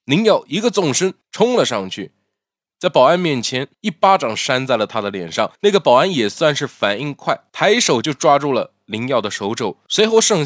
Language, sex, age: Chinese, male, 20-39